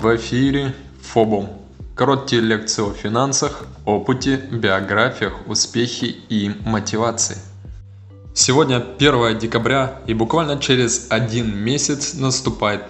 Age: 20-39